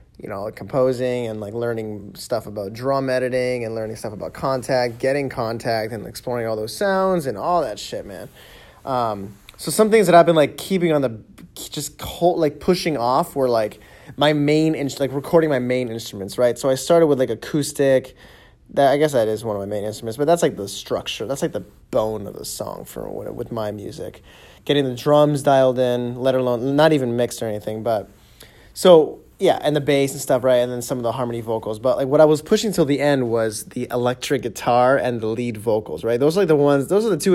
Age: 20-39